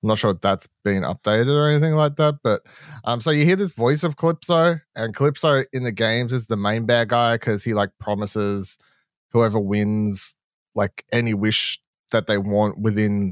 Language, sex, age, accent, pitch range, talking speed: English, male, 20-39, Australian, 100-130 Hz, 195 wpm